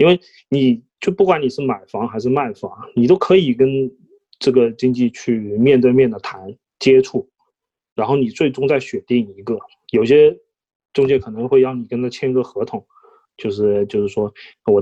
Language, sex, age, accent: Chinese, male, 20-39, native